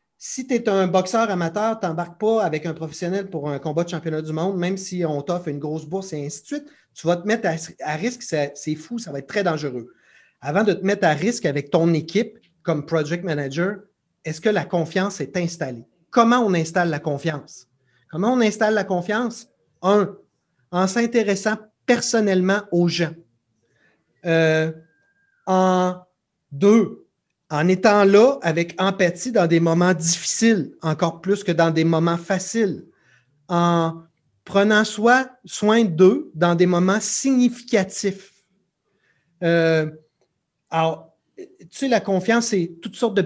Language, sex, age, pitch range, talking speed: French, male, 30-49, 160-205 Hz, 160 wpm